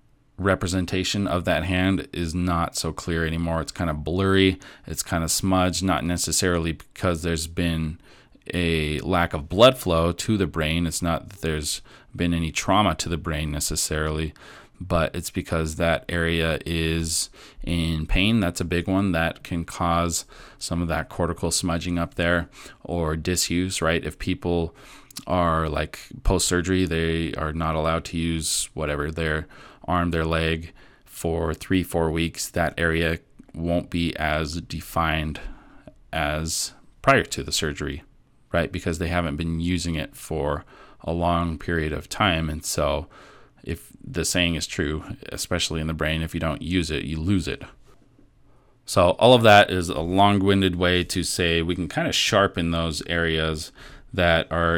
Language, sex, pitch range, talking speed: English, male, 80-90 Hz, 160 wpm